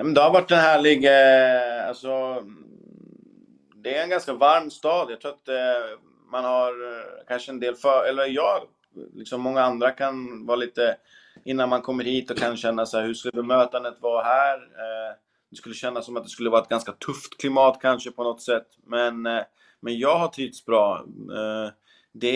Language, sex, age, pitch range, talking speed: Swedish, male, 20-39, 110-130 Hz, 170 wpm